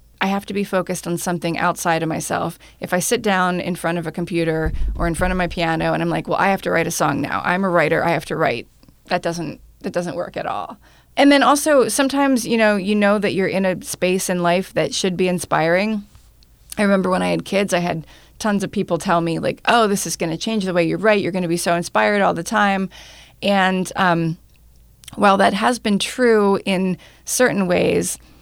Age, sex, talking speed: 30-49, female, 230 wpm